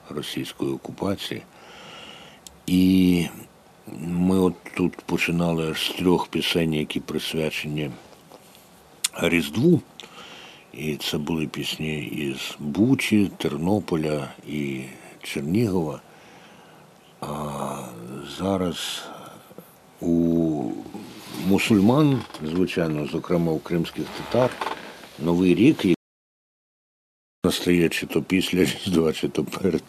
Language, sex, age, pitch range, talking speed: Ukrainian, male, 60-79, 75-85 Hz, 80 wpm